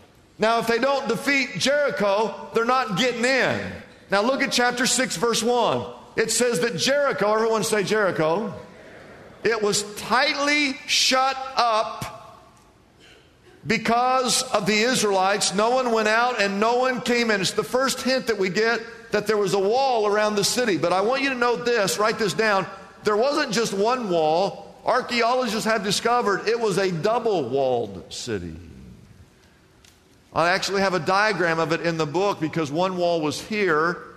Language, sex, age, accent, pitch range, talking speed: English, male, 50-69, American, 160-230 Hz, 165 wpm